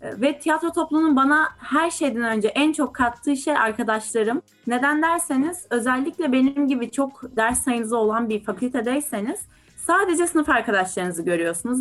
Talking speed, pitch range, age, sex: 135 wpm, 220-290 Hz, 20-39, female